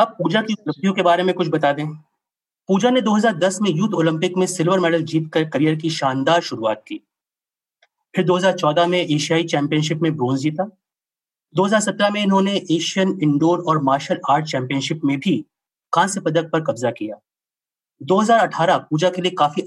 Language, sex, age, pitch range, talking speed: Hindi, male, 30-49, 155-190 Hz, 65 wpm